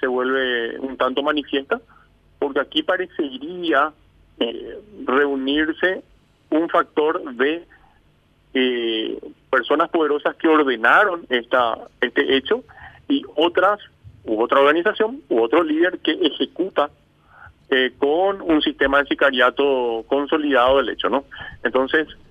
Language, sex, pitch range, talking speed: Spanish, male, 130-160 Hz, 115 wpm